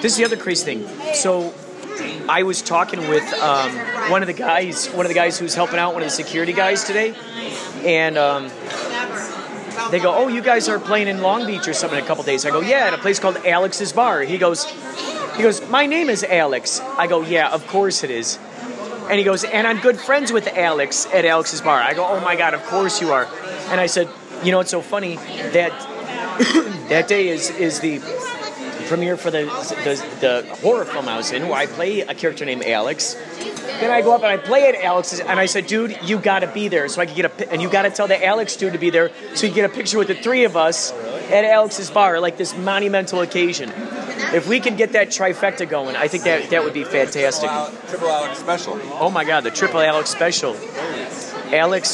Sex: male